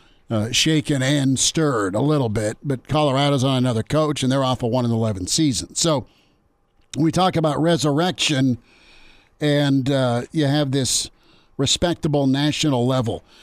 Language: English